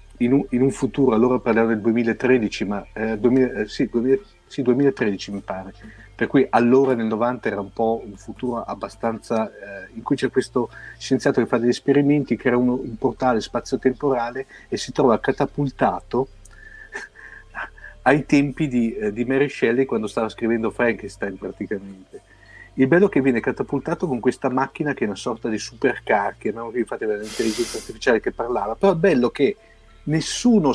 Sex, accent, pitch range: male, native, 110-145 Hz